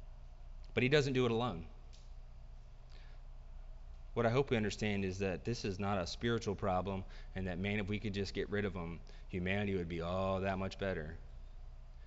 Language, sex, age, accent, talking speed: English, male, 30-49, American, 185 wpm